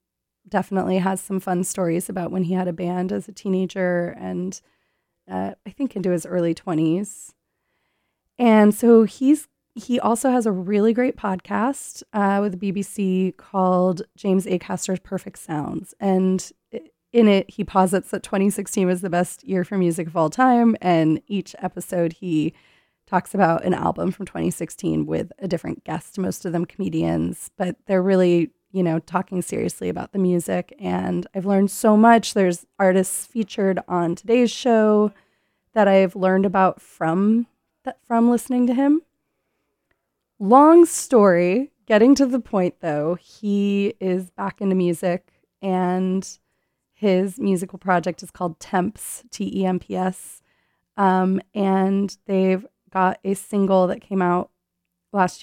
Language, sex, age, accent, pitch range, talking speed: English, female, 20-39, American, 180-205 Hz, 145 wpm